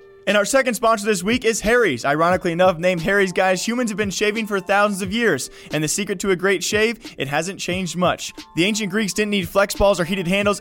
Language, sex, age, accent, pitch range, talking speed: English, male, 20-39, American, 160-195 Hz, 240 wpm